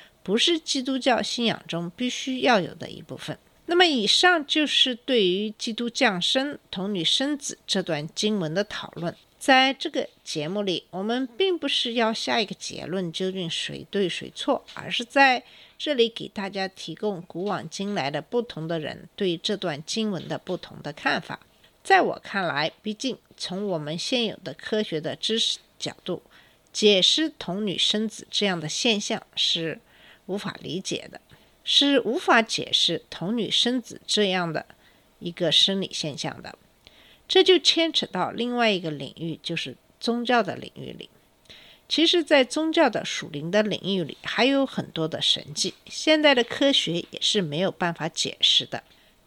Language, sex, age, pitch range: Chinese, female, 50-69, 175-255 Hz